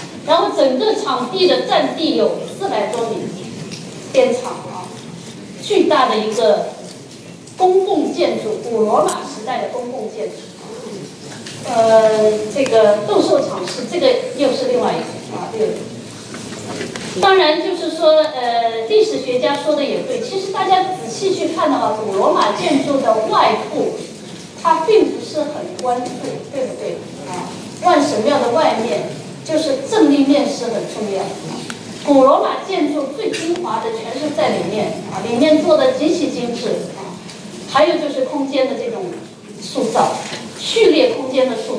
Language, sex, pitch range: Chinese, female, 245-350 Hz